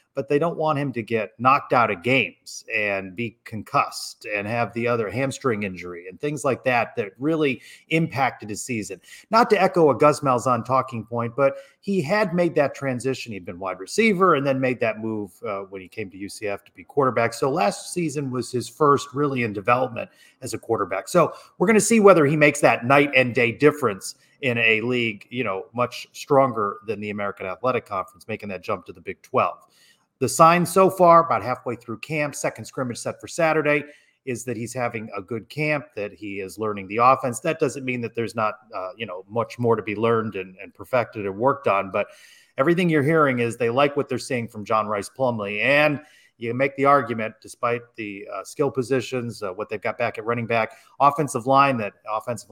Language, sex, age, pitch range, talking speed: English, male, 30-49, 110-145 Hz, 215 wpm